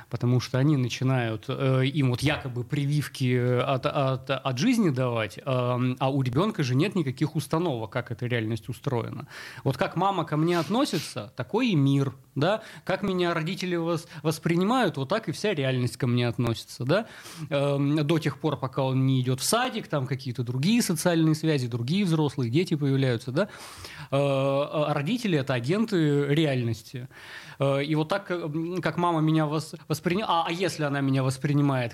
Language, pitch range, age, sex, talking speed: Russian, 130-170 Hz, 20-39, male, 165 wpm